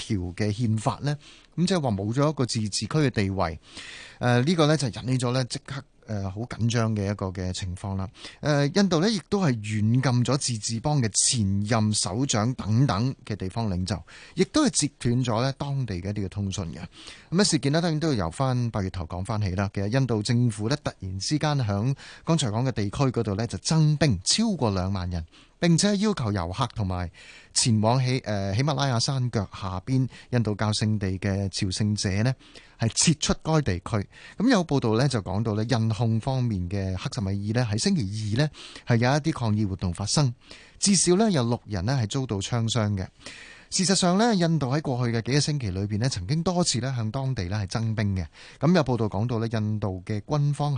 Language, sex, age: Chinese, male, 30-49